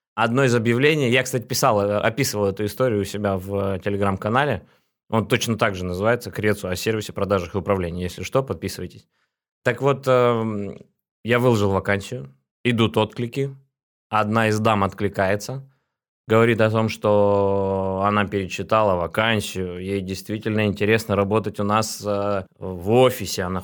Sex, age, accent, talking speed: male, 20-39, native, 135 wpm